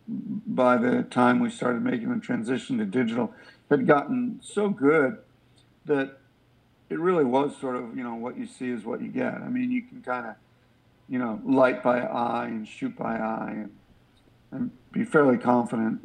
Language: English